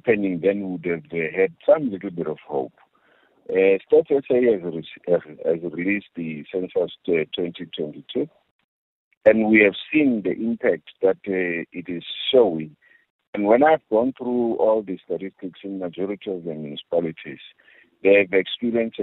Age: 50-69